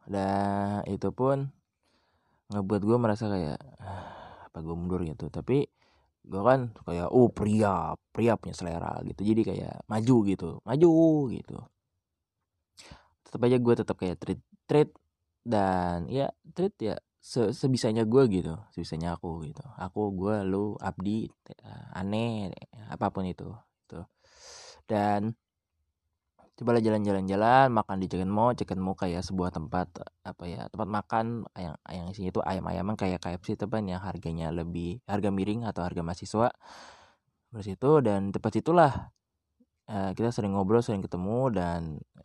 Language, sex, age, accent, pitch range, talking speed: Indonesian, male, 20-39, native, 90-115 Hz, 140 wpm